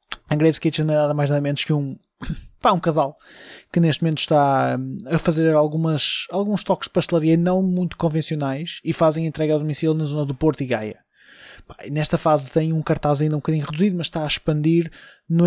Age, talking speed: 20-39, 210 wpm